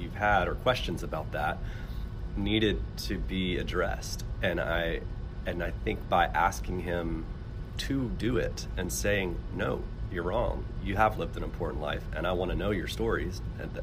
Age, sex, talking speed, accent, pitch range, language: 30-49, male, 175 wpm, American, 90-110 Hz, English